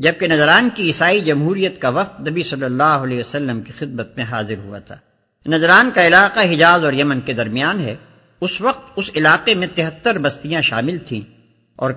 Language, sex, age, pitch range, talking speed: English, male, 50-69, 130-185 Hz, 185 wpm